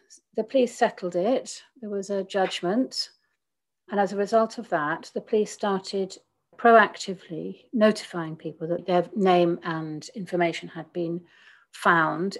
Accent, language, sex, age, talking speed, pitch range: British, English, female, 40-59, 135 wpm, 175-215 Hz